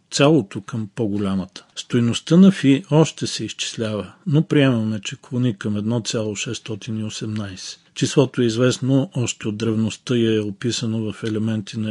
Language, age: Bulgarian, 40-59